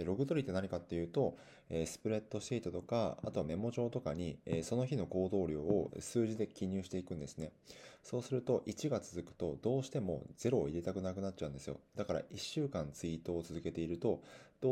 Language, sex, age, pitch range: Japanese, male, 20-39, 85-115 Hz